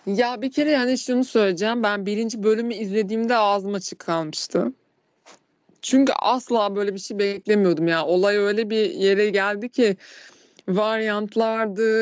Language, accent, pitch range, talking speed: Turkish, native, 190-235 Hz, 135 wpm